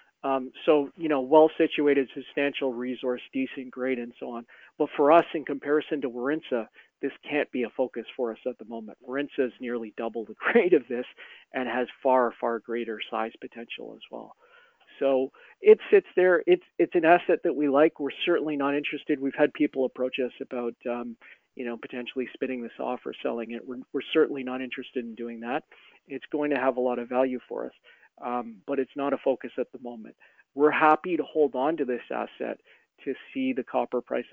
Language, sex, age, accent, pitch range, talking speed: English, male, 40-59, American, 120-140 Hz, 210 wpm